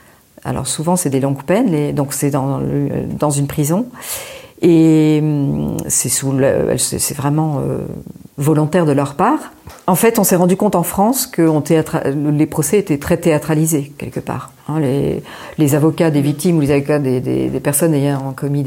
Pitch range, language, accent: 145-180 Hz, French, French